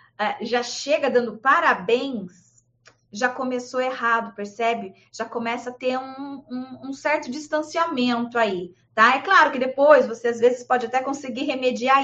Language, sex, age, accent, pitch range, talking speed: Portuguese, female, 20-39, Brazilian, 240-330 Hz, 140 wpm